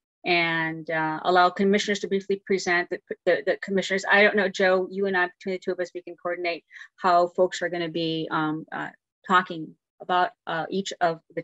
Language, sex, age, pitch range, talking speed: English, female, 30-49, 170-195 Hz, 205 wpm